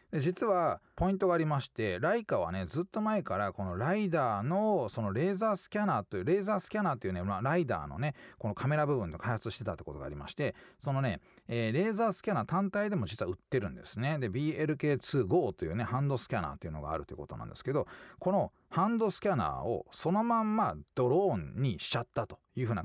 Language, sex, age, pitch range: Japanese, male, 40-59, 100-165 Hz